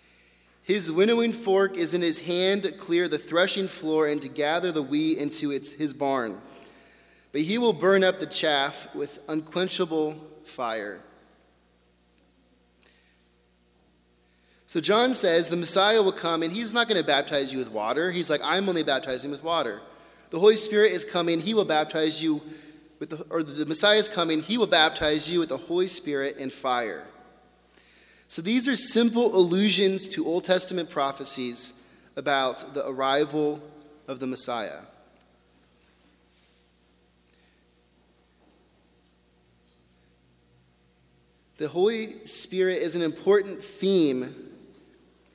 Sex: male